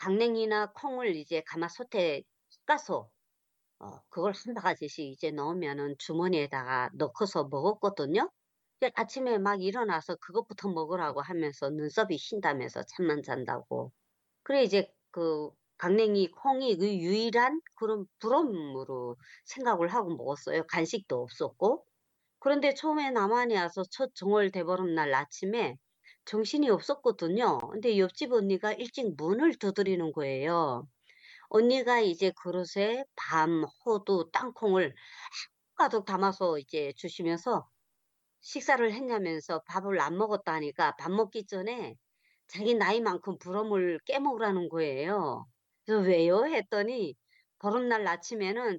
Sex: male